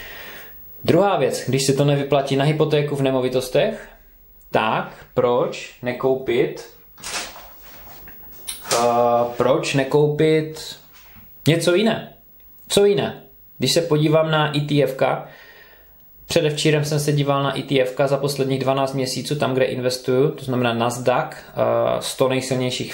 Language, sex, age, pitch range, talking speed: Czech, male, 20-39, 125-145 Hz, 115 wpm